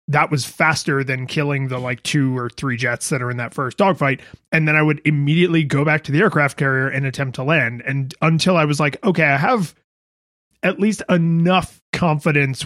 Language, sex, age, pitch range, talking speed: English, male, 30-49, 135-165 Hz, 210 wpm